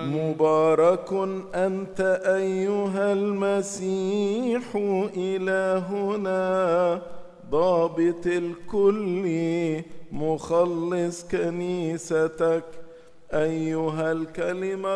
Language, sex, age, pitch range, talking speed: English, male, 50-69, 170-195 Hz, 45 wpm